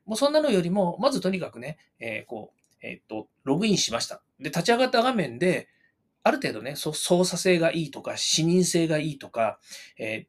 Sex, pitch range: male, 135-215 Hz